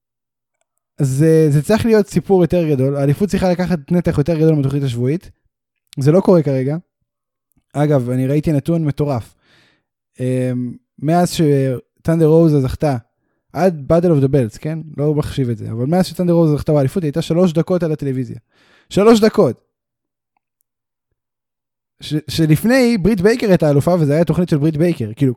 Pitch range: 140-185 Hz